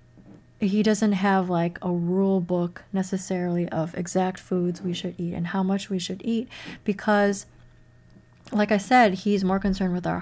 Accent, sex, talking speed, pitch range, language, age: American, female, 170 wpm, 175-210 Hz, English, 30-49